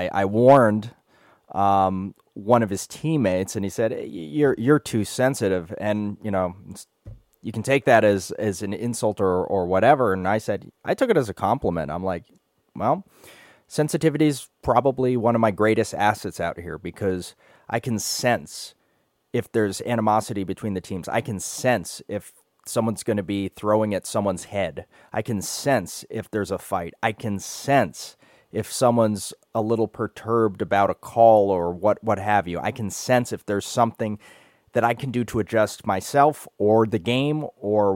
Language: English